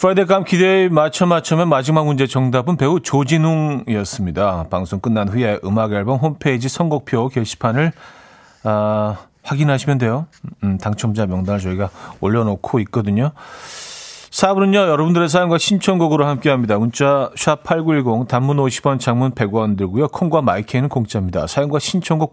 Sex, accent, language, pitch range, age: male, native, Korean, 105-155 Hz, 40-59